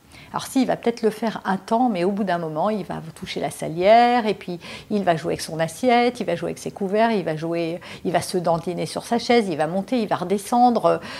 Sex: female